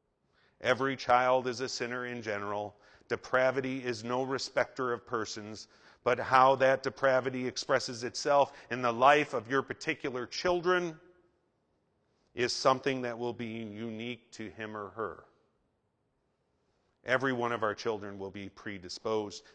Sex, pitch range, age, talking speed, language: male, 115-135 Hz, 40-59, 135 wpm, English